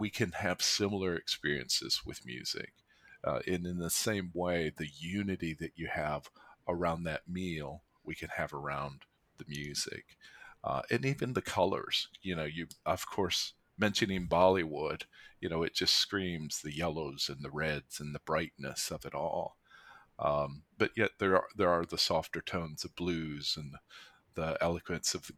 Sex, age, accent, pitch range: male, 40-59, American, 75-95 Hz